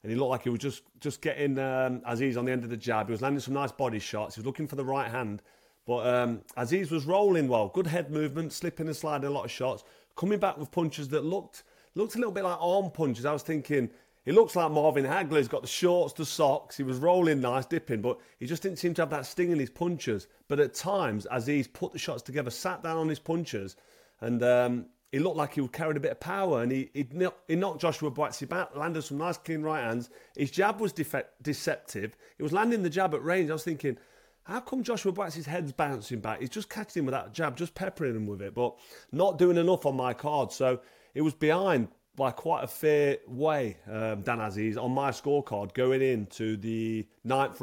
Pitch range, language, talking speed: 125-170 Hz, English, 240 wpm